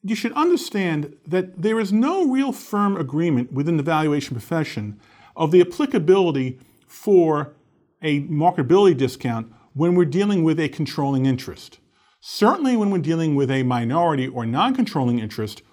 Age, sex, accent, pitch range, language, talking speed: 40-59, male, American, 125-175 Hz, English, 145 wpm